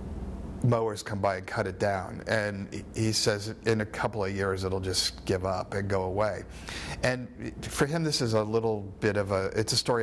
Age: 50-69